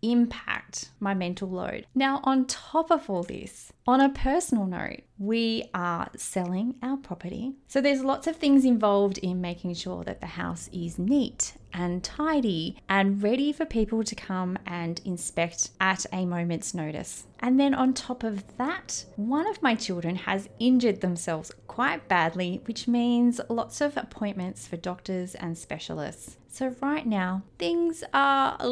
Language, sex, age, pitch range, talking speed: English, female, 20-39, 180-245 Hz, 160 wpm